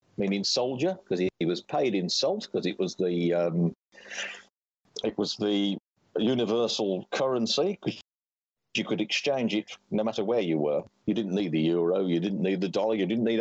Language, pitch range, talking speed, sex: English, 95-130 Hz, 185 wpm, male